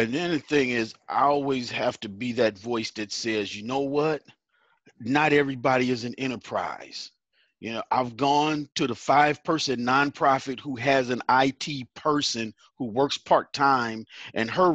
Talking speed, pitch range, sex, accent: 170 wpm, 115-150 Hz, male, American